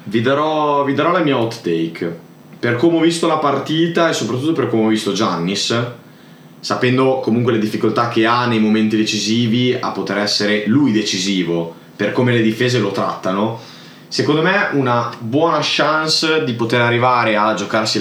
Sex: male